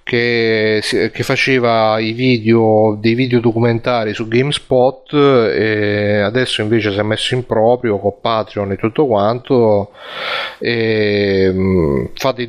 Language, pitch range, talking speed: Italian, 110-135 Hz, 125 wpm